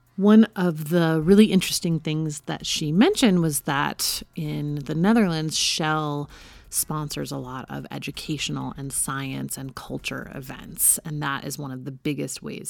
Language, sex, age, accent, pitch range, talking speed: English, female, 30-49, American, 140-175 Hz, 155 wpm